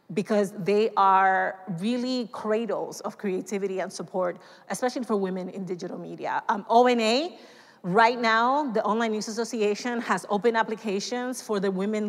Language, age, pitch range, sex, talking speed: English, 30-49, 190-225 Hz, female, 145 wpm